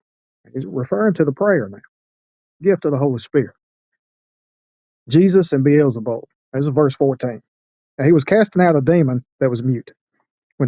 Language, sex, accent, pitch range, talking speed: English, male, American, 130-170 Hz, 165 wpm